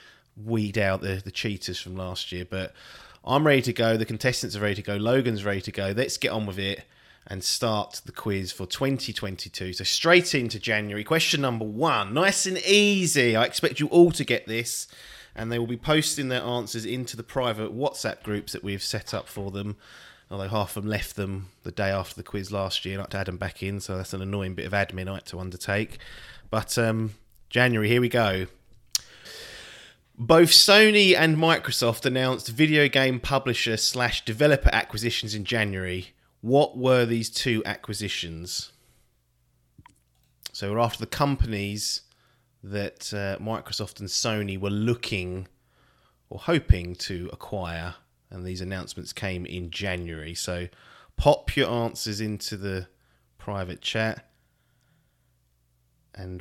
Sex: male